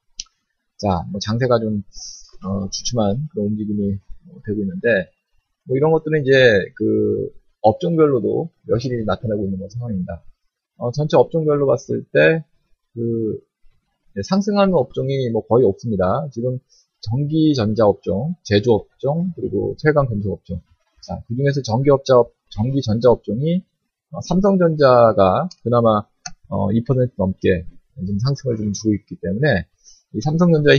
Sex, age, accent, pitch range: male, 20-39, native, 100-150 Hz